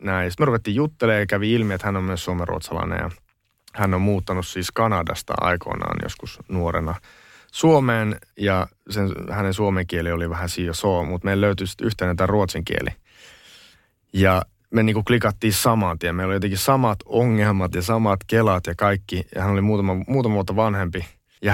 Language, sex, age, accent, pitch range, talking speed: Finnish, male, 30-49, native, 90-110 Hz, 180 wpm